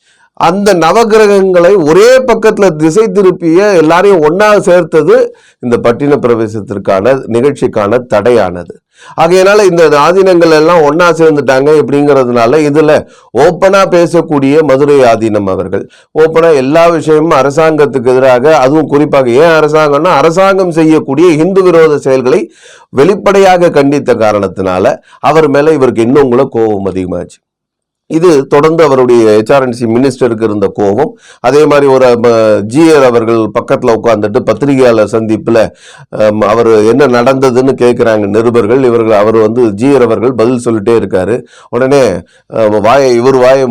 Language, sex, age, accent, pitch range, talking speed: Tamil, male, 30-49, native, 115-160 Hz, 115 wpm